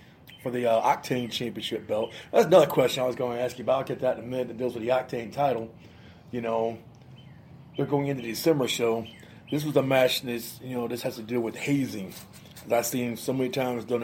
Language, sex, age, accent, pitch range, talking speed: English, male, 30-49, American, 125-155 Hz, 235 wpm